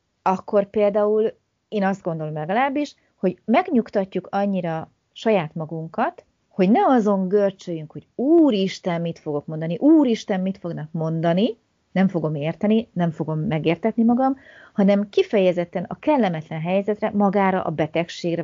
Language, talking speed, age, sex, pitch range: Hungarian, 125 wpm, 30-49, female, 165-220 Hz